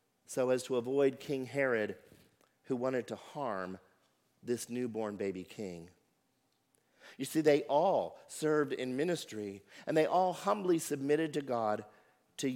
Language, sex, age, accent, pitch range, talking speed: English, male, 50-69, American, 110-145 Hz, 140 wpm